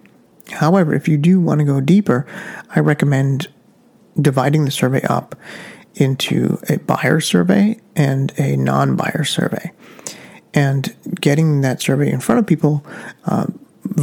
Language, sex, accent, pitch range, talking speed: English, male, American, 135-170 Hz, 135 wpm